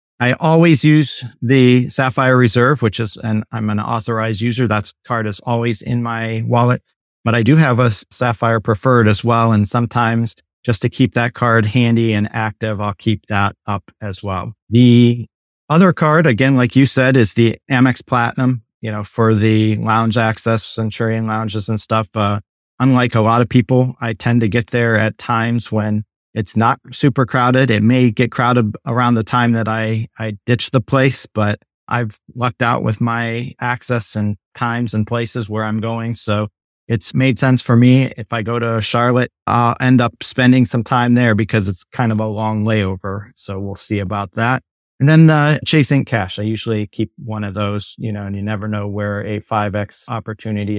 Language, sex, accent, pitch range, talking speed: English, male, American, 110-125 Hz, 195 wpm